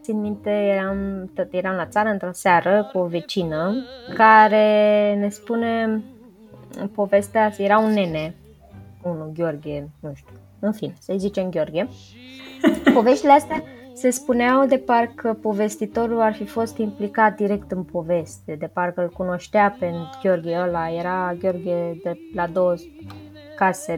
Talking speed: 140 wpm